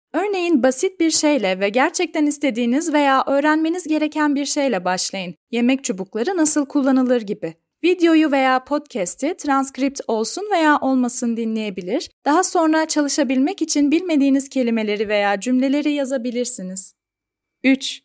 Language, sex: Turkish, female